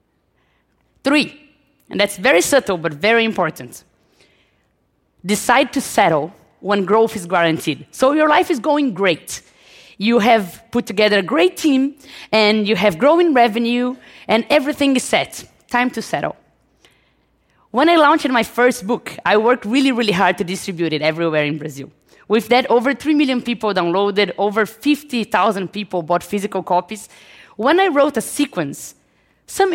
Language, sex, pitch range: Chinese, female, 205-295 Hz